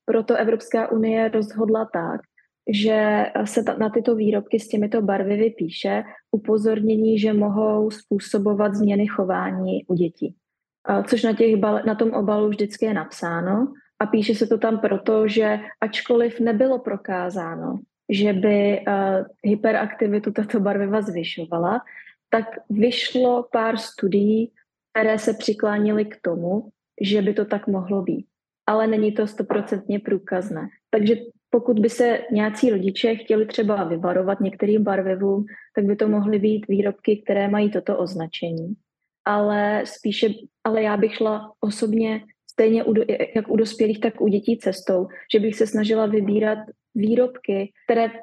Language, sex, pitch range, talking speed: Slovak, female, 205-225 Hz, 135 wpm